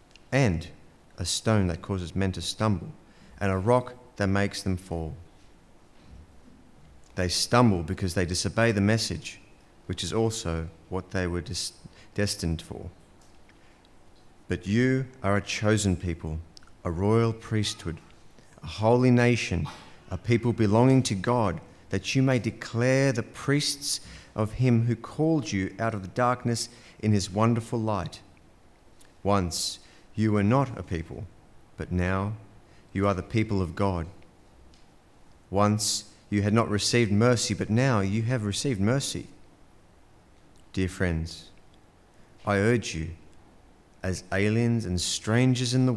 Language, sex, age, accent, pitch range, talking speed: English, male, 40-59, Australian, 90-115 Hz, 135 wpm